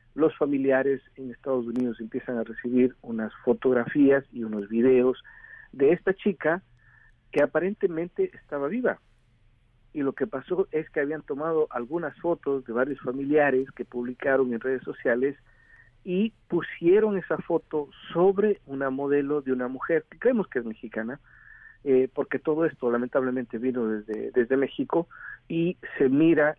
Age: 50-69